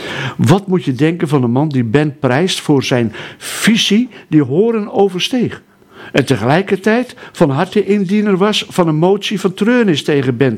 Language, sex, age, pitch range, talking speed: Dutch, male, 60-79, 130-175 Hz, 170 wpm